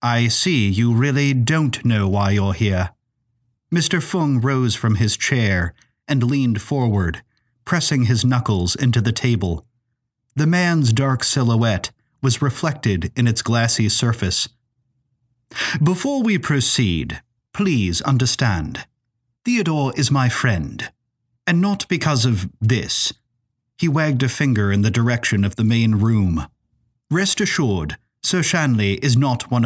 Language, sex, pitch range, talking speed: English, male, 115-140 Hz, 135 wpm